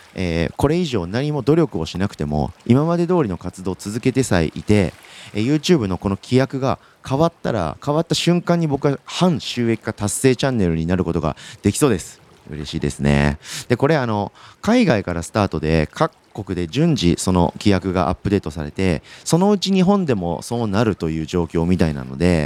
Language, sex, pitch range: Japanese, male, 85-135 Hz